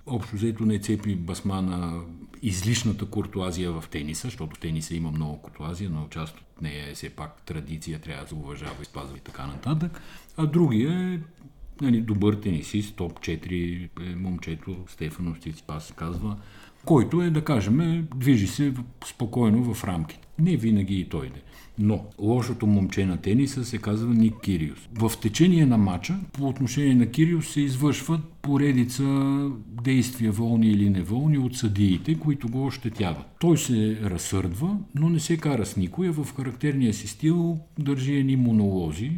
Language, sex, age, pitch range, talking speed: Bulgarian, male, 50-69, 90-125 Hz, 160 wpm